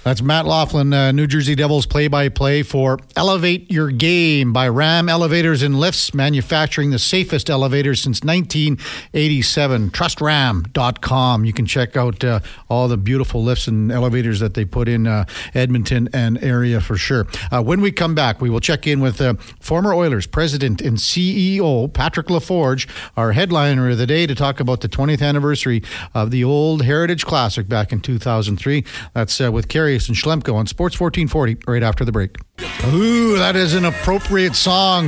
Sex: male